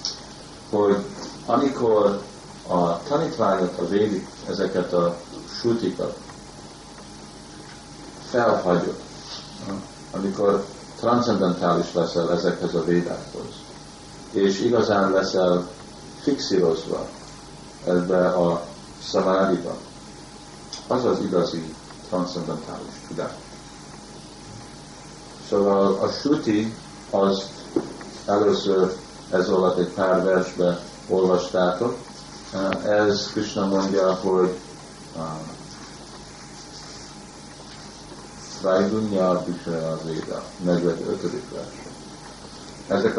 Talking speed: 70 wpm